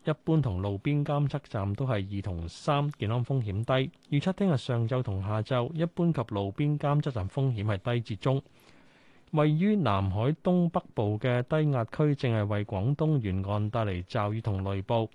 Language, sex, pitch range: Chinese, male, 105-150 Hz